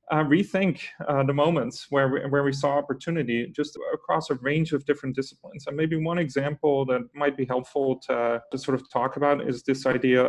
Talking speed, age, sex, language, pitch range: 210 wpm, 30-49, male, English, 130-155 Hz